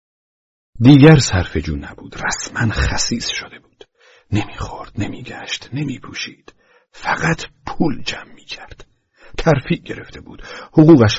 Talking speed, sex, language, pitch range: 95 wpm, male, Persian, 95-145 Hz